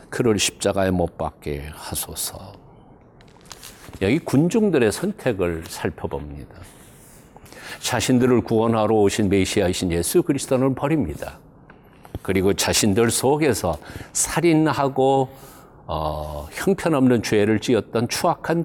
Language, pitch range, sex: Korean, 95-150 Hz, male